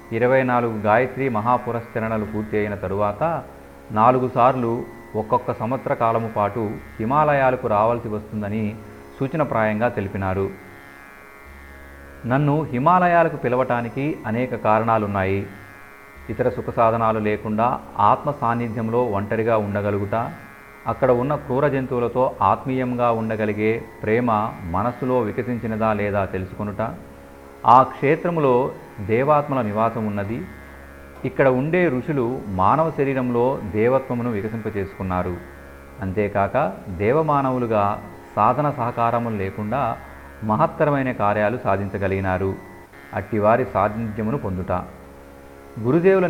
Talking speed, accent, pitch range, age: 85 wpm, native, 100-125 Hz, 40-59